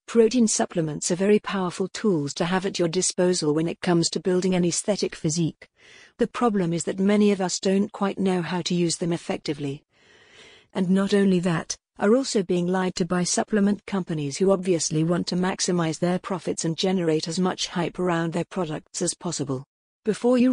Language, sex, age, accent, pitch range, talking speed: English, female, 50-69, British, 170-200 Hz, 190 wpm